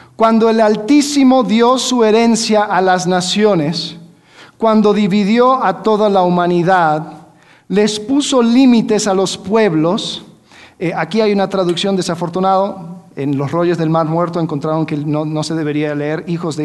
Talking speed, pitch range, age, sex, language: 150 wpm, 170-220 Hz, 50-69, male, Spanish